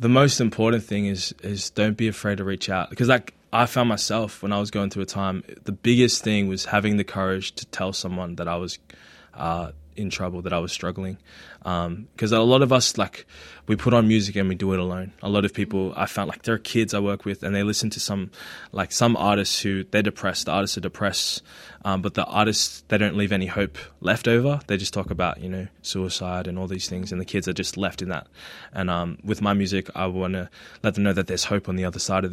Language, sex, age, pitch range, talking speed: English, male, 20-39, 95-105 Hz, 255 wpm